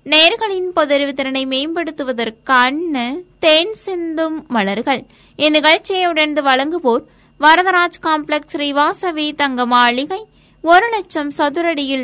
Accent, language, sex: native, Tamil, female